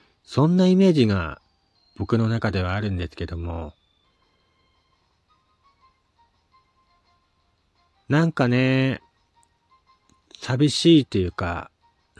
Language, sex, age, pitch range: Japanese, male, 40-59, 85-130 Hz